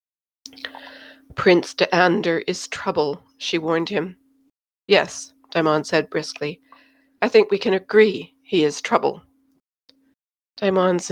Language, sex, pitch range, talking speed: English, female, 185-270 Hz, 115 wpm